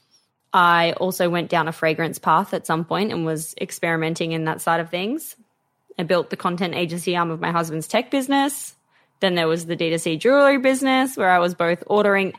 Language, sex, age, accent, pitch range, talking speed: English, female, 20-39, Australian, 170-240 Hz, 200 wpm